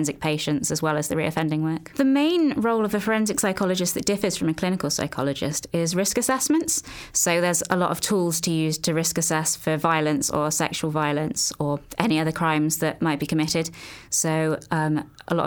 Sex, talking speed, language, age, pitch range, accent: female, 200 wpm, English, 20-39, 155-175 Hz, British